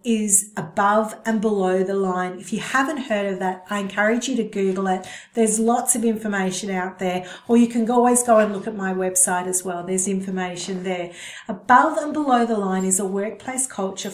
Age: 40-59